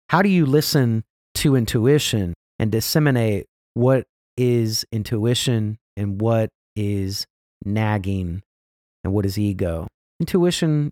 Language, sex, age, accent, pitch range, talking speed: English, male, 30-49, American, 105-145 Hz, 110 wpm